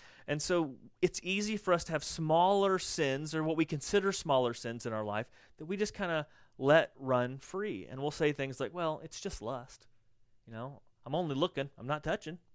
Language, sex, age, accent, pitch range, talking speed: English, male, 30-49, American, 120-165 Hz, 210 wpm